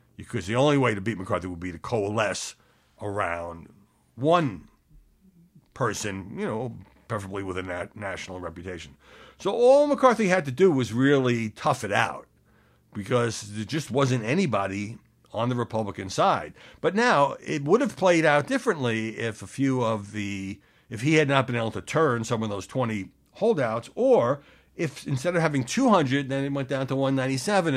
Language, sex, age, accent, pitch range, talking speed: English, male, 60-79, American, 95-135 Hz, 170 wpm